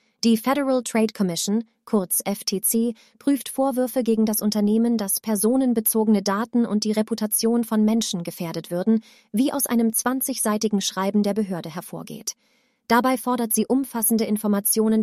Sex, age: female, 30-49